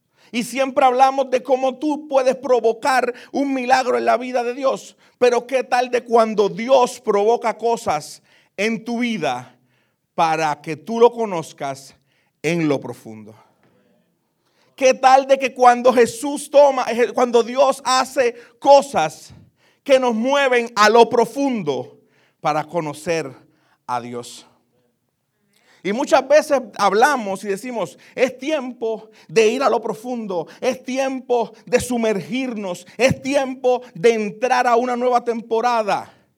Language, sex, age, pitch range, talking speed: Spanish, male, 40-59, 155-250 Hz, 130 wpm